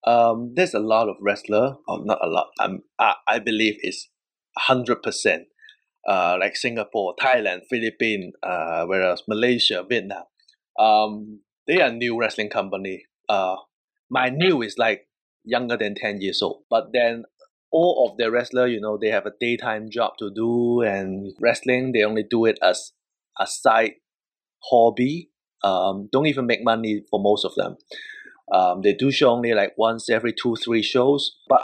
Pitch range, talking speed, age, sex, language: 110-130 Hz, 165 wpm, 30-49, male, English